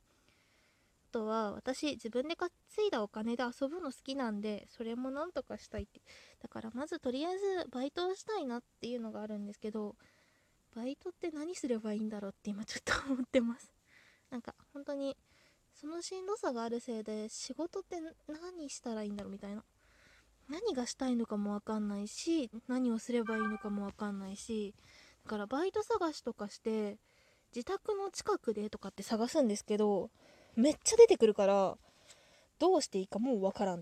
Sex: female